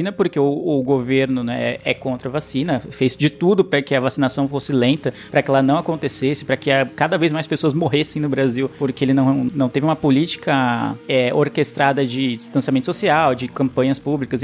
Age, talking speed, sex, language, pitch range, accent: 20-39, 200 wpm, male, Portuguese, 135-170 Hz, Brazilian